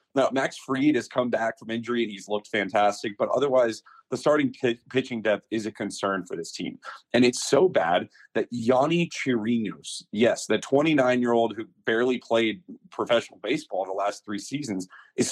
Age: 30-49